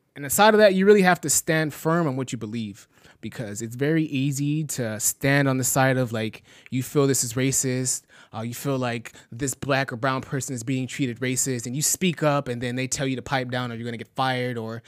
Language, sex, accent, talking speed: English, male, American, 250 wpm